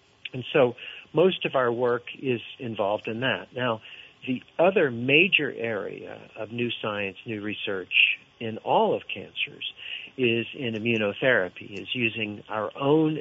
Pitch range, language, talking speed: 110-135 Hz, English, 140 wpm